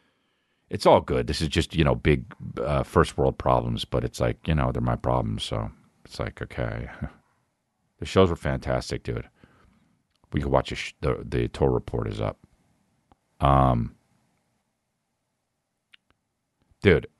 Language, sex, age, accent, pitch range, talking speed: English, male, 40-59, American, 70-105 Hz, 150 wpm